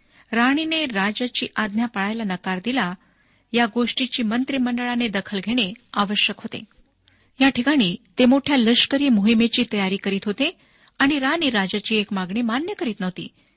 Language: Marathi